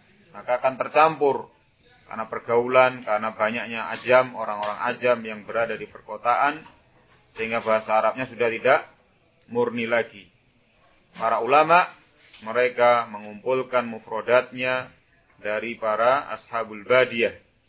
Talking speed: 100 wpm